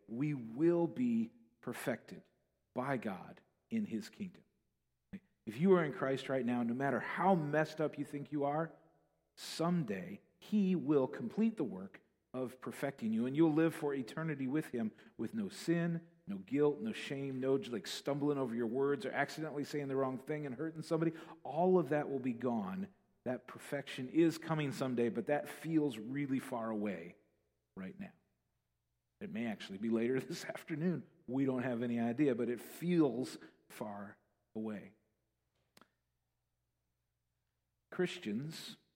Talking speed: 155 wpm